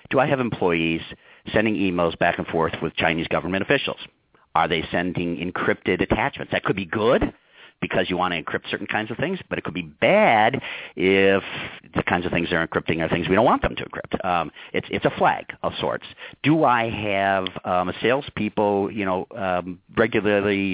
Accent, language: American, English